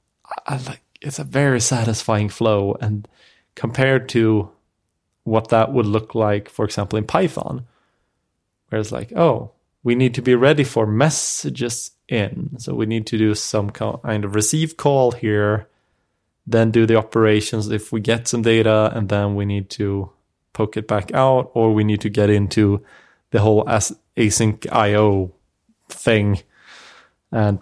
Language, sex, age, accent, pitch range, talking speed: English, male, 20-39, Norwegian, 105-115 Hz, 160 wpm